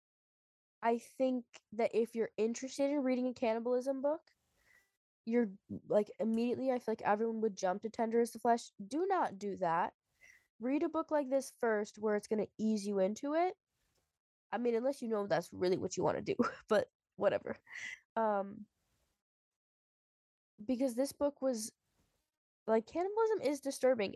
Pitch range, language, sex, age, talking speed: 210-260 Hz, English, female, 10-29, 165 wpm